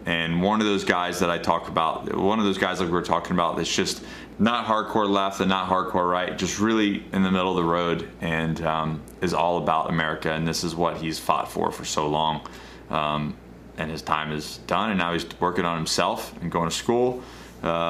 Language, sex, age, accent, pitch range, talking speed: English, male, 20-39, American, 80-95 Hz, 230 wpm